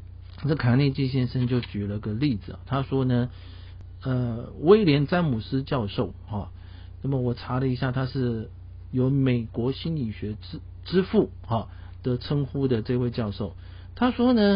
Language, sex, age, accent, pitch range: Chinese, male, 50-69, native, 90-135 Hz